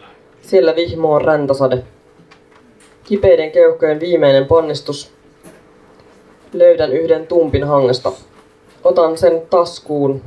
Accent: native